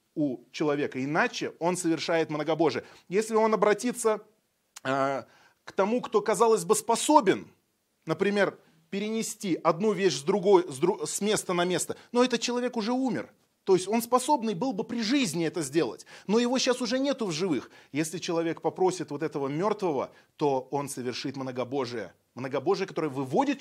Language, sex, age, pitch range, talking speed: Russian, male, 30-49, 160-220 Hz, 155 wpm